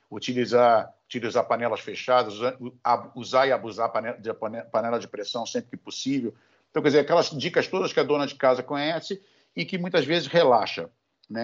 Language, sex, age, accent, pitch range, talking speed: Portuguese, male, 50-69, Brazilian, 130-165 Hz, 175 wpm